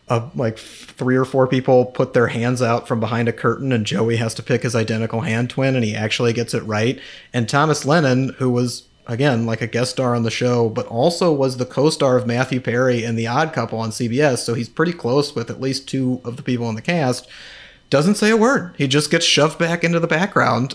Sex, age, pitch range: male, 30-49, 115-140 Hz